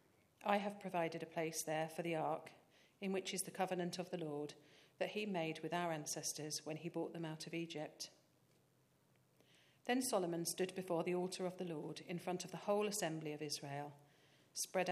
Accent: British